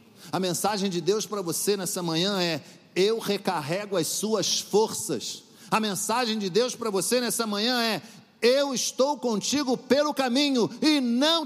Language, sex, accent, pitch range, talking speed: Portuguese, male, Brazilian, 145-220 Hz, 155 wpm